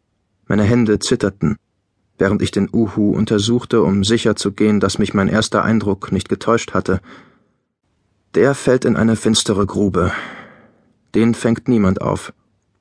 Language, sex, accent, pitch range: German, male, German, 100-120 Hz